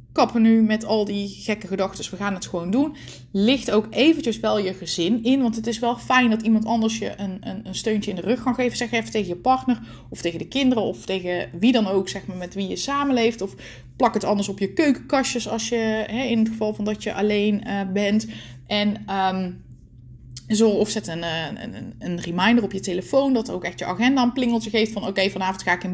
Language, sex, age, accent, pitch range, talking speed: Dutch, female, 20-39, Dutch, 185-235 Hz, 225 wpm